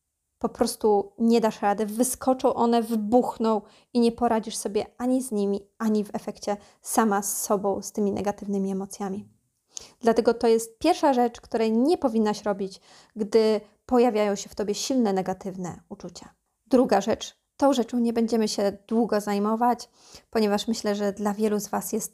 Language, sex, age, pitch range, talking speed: Polish, female, 20-39, 210-250 Hz, 160 wpm